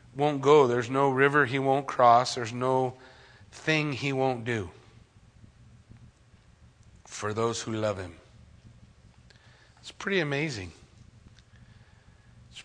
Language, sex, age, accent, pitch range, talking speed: English, male, 40-59, American, 95-130 Hz, 110 wpm